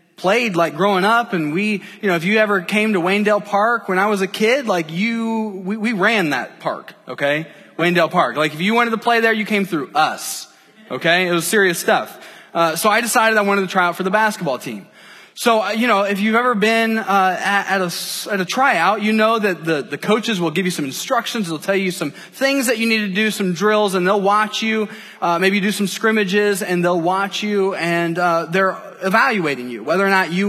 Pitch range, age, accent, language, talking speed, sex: 180-220 Hz, 20-39, American, English, 235 wpm, male